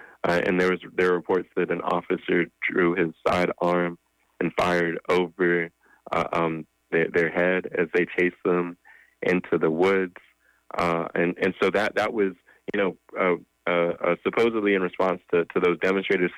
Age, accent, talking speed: 20-39, American, 170 wpm